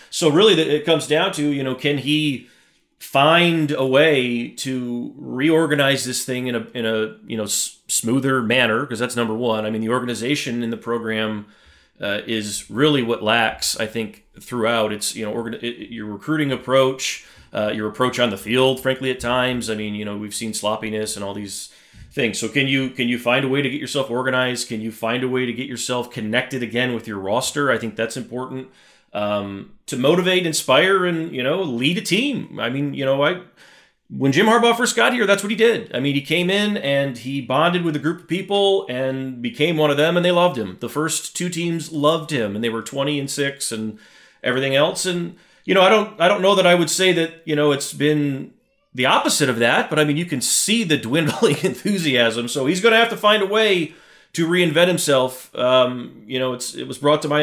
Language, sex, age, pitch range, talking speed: English, male, 30-49, 120-160 Hz, 225 wpm